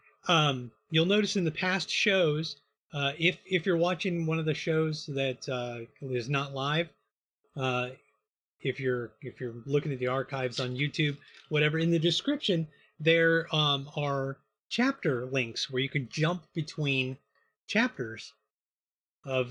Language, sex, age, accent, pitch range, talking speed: English, male, 30-49, American, 130-165 Hz, 150 wpm